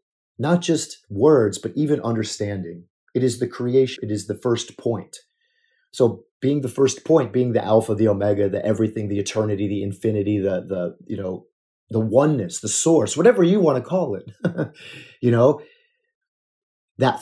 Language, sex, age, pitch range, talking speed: English, male, 30-49, 110-160 Hz, 165 wpm